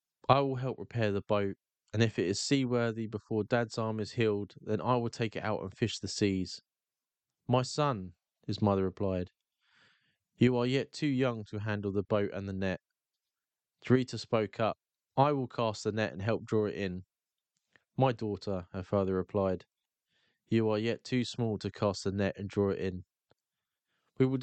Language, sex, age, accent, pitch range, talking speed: English, male, 20-39, British, 100-120 Hz, 185 wpm